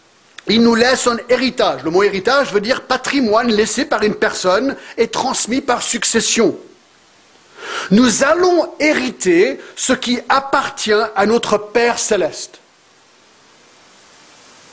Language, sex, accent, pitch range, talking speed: French, male, French, 190-270 Hz, 120 wpm